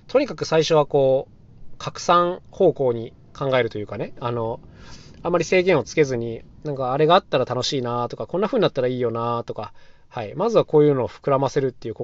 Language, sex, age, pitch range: Japanese, male, 20-39, 115-155 Hz